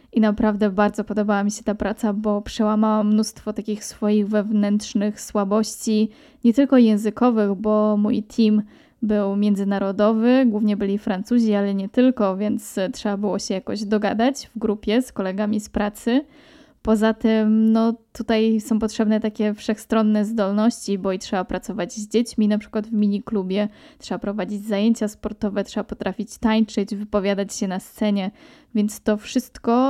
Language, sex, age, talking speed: Polish, female, 10-29, 150 wpm